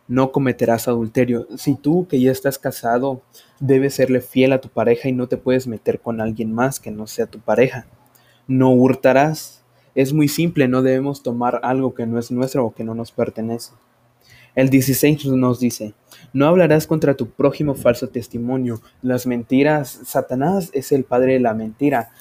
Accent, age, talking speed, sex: Mexican, 20-39, 180 wpm, male